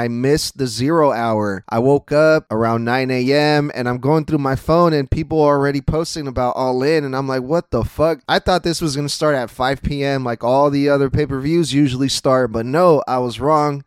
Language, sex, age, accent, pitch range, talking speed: English, male, 20-39, American, 130-150 Hz, 225 wpm